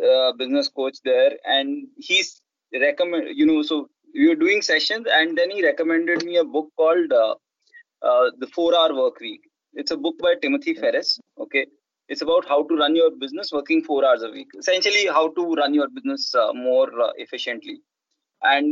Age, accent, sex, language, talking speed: 20-39, native, male, Hindi, 190 wpm